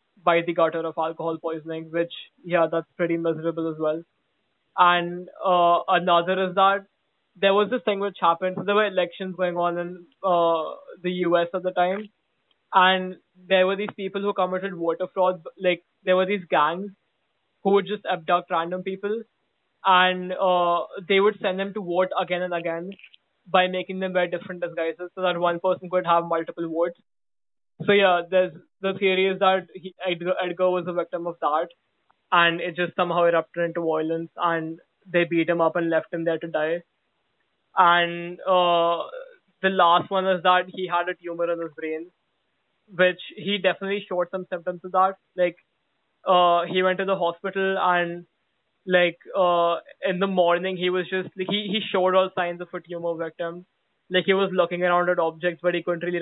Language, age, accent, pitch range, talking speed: English, 20-39, Indian, 170-190 Hz, 185 wpm